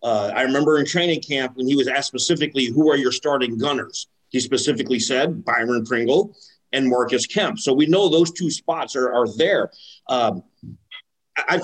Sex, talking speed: male, 180 wpm